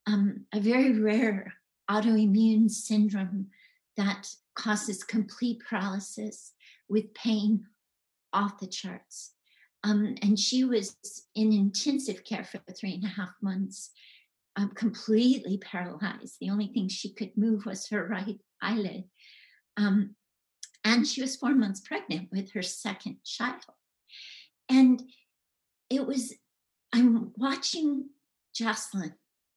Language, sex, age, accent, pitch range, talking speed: English, female, 50-69, American, 210-265 Hz, 120 wpm